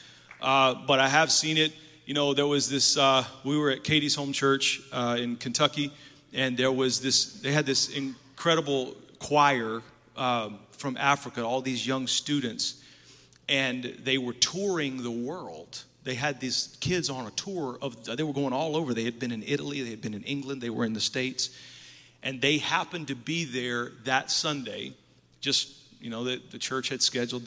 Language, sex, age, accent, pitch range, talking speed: English, male, 30-49, American, 125-145 Hz, 190 wpm